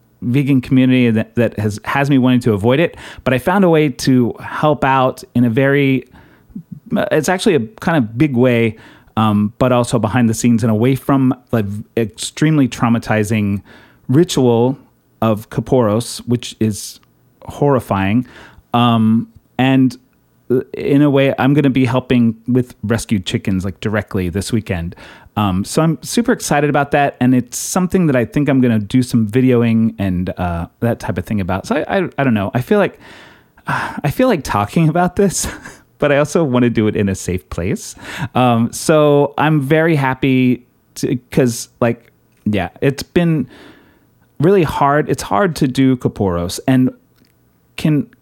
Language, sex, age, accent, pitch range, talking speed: English, male, 30-49, American, 105-130 Hz, 170 wpm